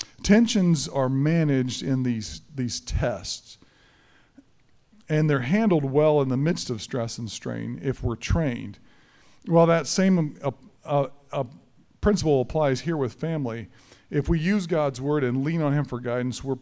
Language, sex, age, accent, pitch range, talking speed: English, male, 40-59, American, 125-160 Hz, 160 wpm